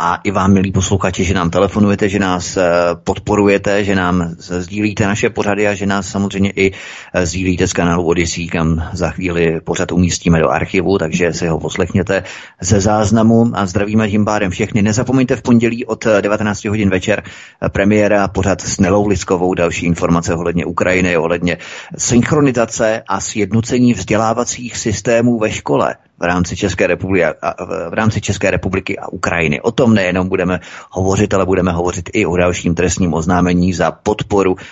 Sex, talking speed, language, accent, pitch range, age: male, 160 wpm, Czech, native, 90-105 Hz, 30-49